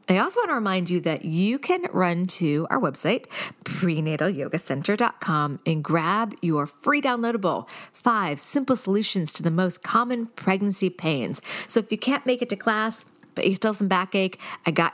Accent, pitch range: American, 165-230 Hz